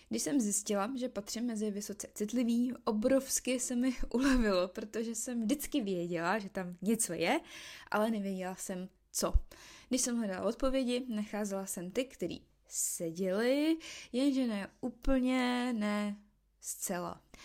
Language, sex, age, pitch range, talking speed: Czech, female, 20-39, 200-255 Hz, 130 wpm